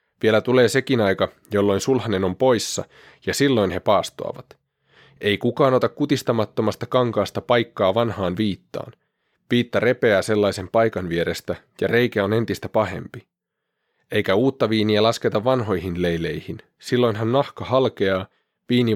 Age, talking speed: 30-49, 125 wpm